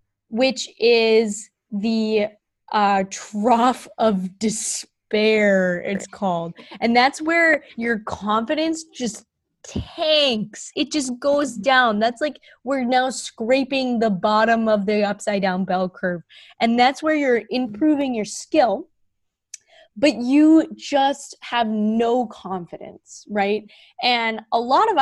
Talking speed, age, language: 120 wpm, 20-39, English